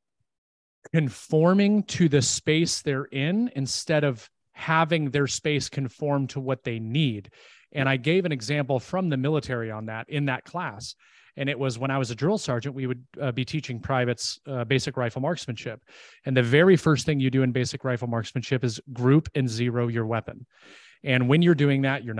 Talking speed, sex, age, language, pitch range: 190 wpm, male, 30-49, English, 120-150 Hz